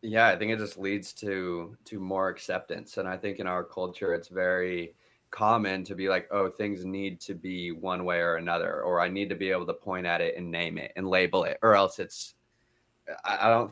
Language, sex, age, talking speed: English, male, 20-39, 230 wpm